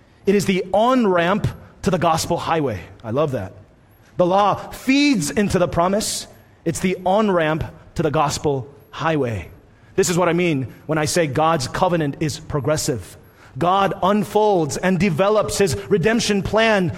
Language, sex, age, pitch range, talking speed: English, male, 30-49, 150-215 Hz, 150 wpm